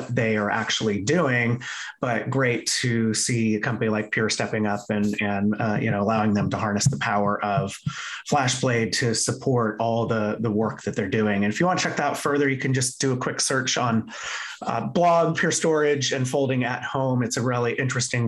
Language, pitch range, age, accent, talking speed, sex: English, 110-145 Hz, 30-49, American, 215 wpm, male